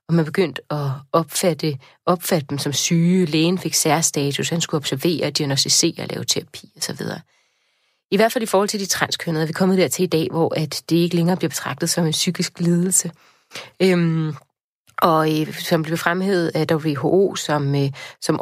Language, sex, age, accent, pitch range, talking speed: Danish, female, 30-49, native, 160-185 Hz, 170 wpm